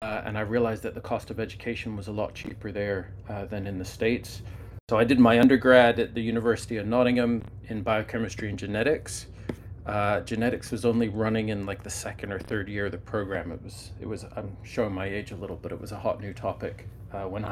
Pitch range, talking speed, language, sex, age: 100-115 Hz, 230 wpm, English, male, 30-49